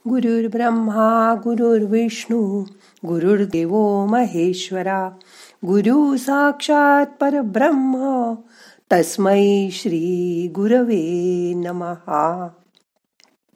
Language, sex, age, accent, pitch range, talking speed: Marathi, female, 50-69, native, 175-230 Hz, 60 wpm